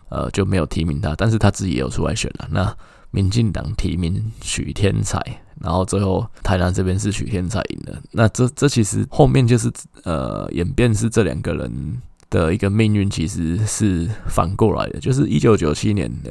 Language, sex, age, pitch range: Chinese, male, 20-39, 80-110 Hz